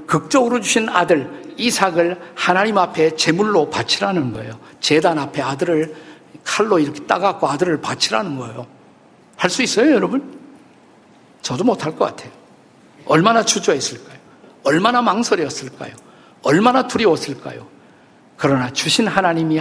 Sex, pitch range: male, 145-195 Hz